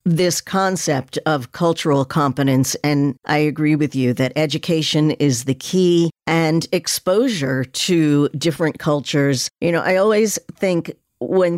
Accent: American